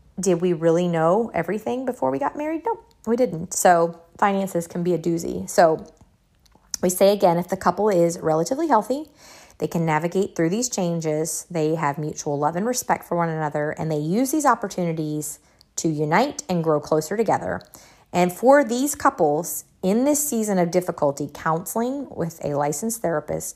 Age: 30-49